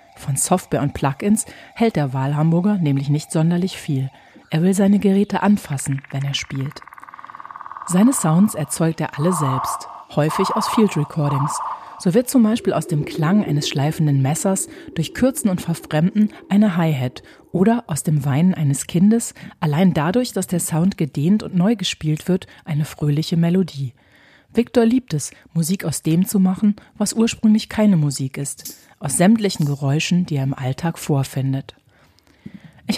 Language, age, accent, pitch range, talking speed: German, 40-59, German, 150-200 Hz, 160 wpm